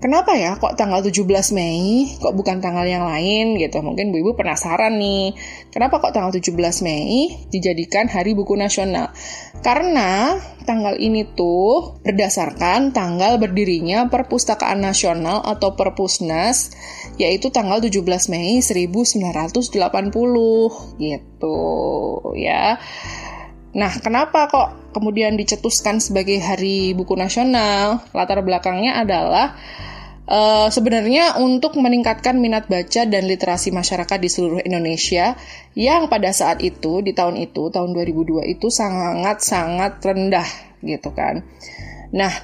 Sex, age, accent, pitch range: female, 20-39, native, 180-225 Hz